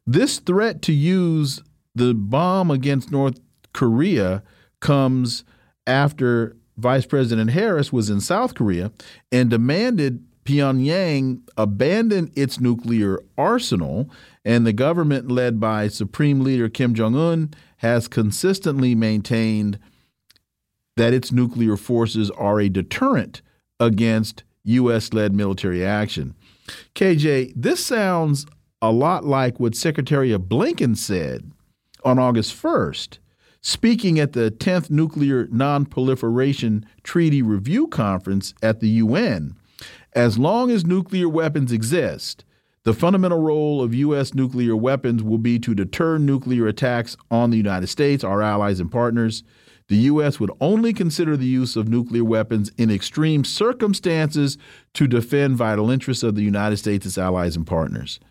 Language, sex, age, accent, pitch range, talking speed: English, male, 40-59, American, 110-145 Hz, 130 wpm